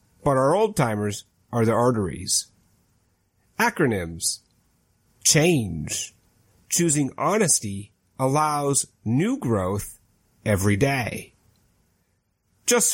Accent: American